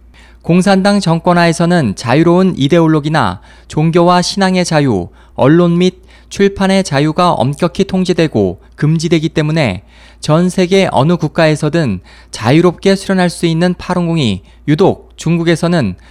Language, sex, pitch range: Korean, male, 120-180 Hz